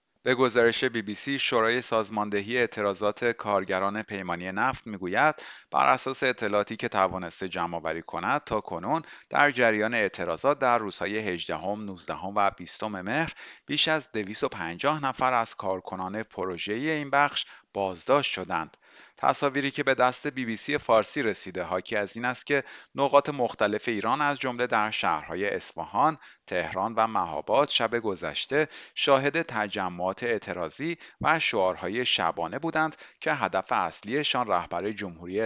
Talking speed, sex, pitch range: 140 wpm, male, 95-130 Hz